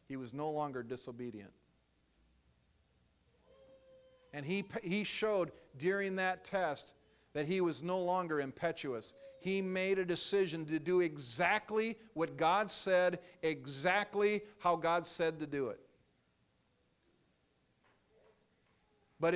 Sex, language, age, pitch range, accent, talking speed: male, English, 50-69, 115-180 Hz, American, 110 wpm